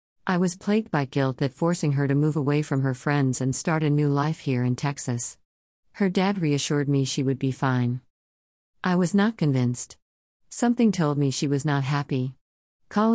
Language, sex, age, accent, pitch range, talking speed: English, female, 40-59, American, 130-175 Hz, 190 wpm